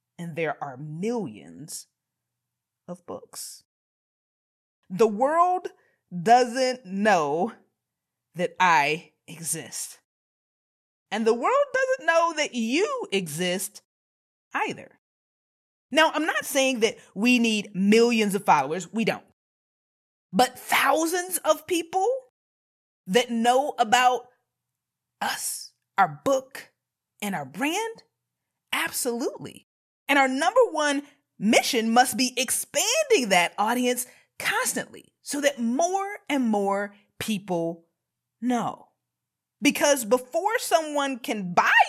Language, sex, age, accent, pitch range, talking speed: English, female, 30-49, American, 205-300 Hz, 100 wpm